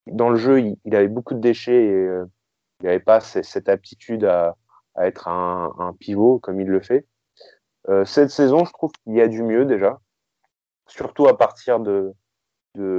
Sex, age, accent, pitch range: male, 20-39, French, 95-120 Hz